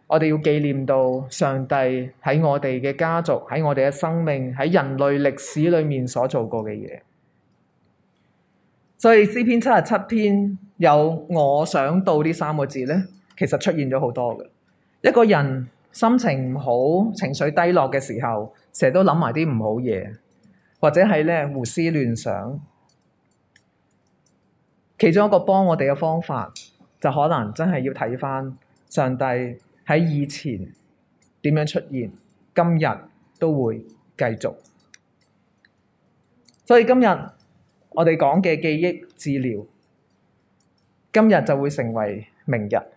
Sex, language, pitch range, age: male, Chinese, 130-175 Hz, 20-39